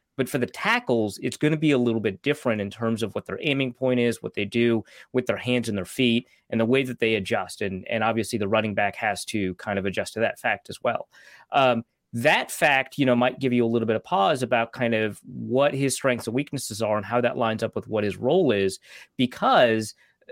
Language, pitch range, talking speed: English, 110-135 Hz, 250 wpm